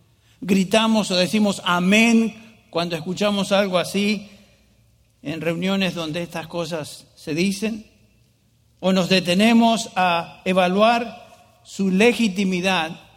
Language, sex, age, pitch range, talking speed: English, male, 60-79, 160-205 Hz, 100 wpm